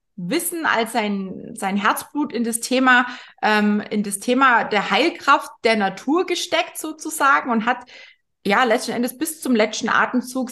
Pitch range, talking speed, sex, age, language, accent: 215-275 Hz, 155 wpm, female, 20-39, German, German